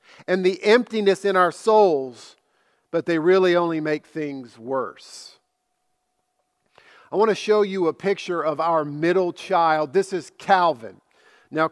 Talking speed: 145 wpm